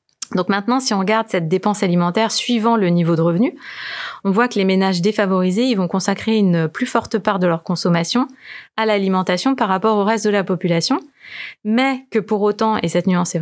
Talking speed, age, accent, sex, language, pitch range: 205 wpm, 20-39, French, female, French, 185-225 Hz